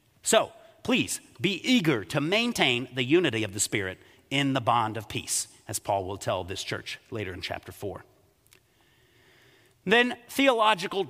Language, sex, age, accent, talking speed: English, male, 40-59, American, 150 wpm